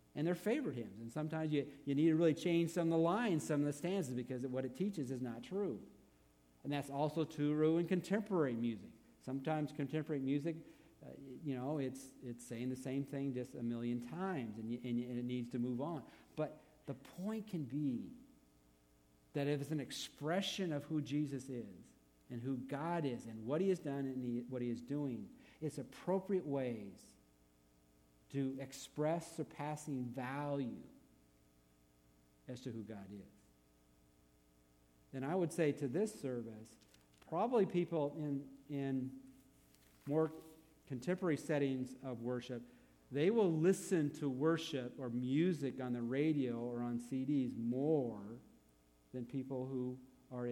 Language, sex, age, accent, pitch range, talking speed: English, male, 50-69, American, 120-155 Hz, 160 wpm